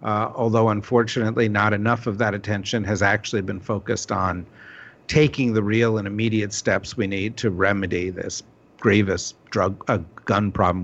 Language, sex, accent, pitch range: English, male, American, 105-130 Hz